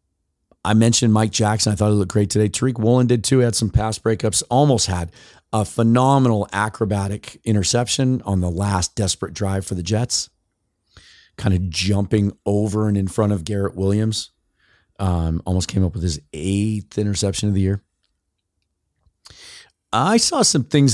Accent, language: American, English